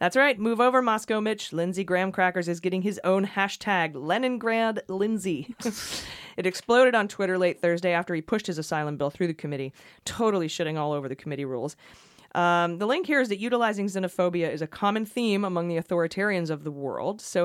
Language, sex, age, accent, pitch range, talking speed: English, female, 30-49, American, 165-215 Hz, 195 wpm